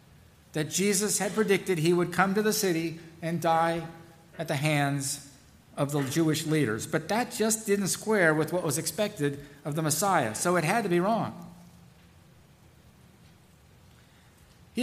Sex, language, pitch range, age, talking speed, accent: male, English, 150-195 Hz, 50-69, 155 wpm, American